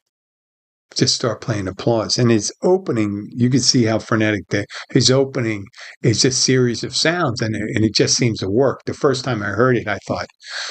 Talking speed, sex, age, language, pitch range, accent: 190 wpm, male, 50-69, English, 105-130 Hz, American